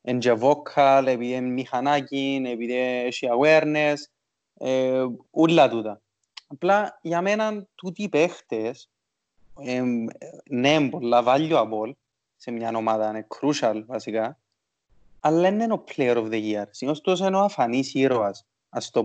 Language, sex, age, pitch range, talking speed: Greek, male, 20-39, 120-175 Hz, 120 wpm